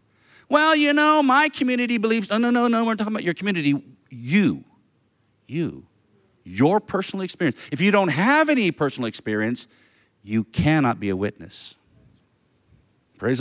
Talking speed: 150 wpm